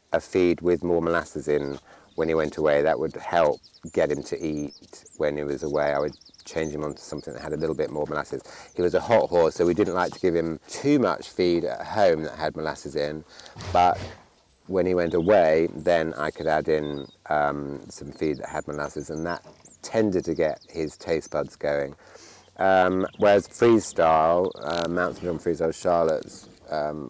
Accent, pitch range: British, 75-90 Hz